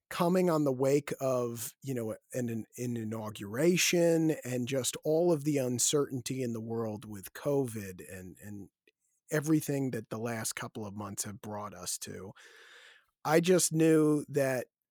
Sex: male